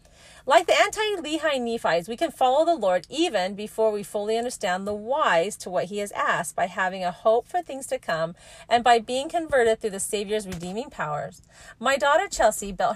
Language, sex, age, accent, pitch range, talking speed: English, female, 40-59, American, 180-250 Hz, 200 wpm